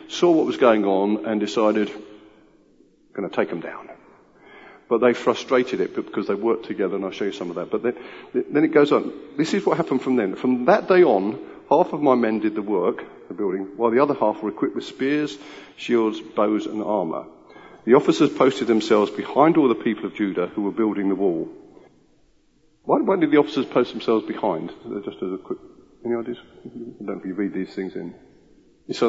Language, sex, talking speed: English, male, 205 wpm